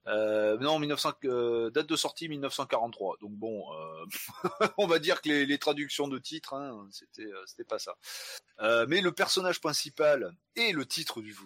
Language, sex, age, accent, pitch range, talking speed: French, male, 30-49, French, 100-150 Hz, 185 wpm